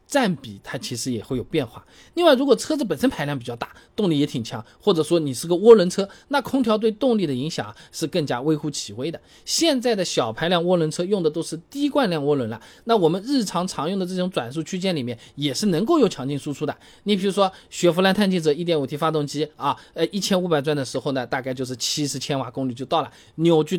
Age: 20-39